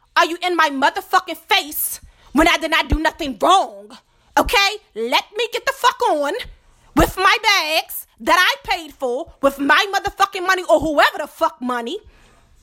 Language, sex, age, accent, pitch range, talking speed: English, female, 30-49, American, 285-380 Hz, 170 wpm